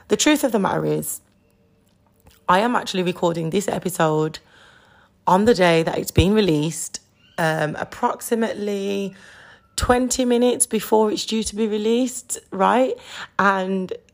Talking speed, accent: 130 wpm, British